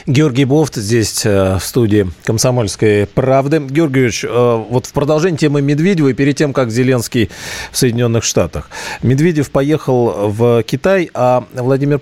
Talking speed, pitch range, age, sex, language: 135 wpm, 110-145 Hz, 40-59, male, Russian